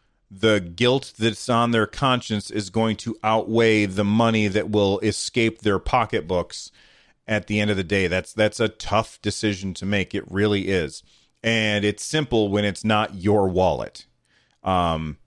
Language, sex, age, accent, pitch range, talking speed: English, male, 30-49, American, 105-130 Hz, 165 wpm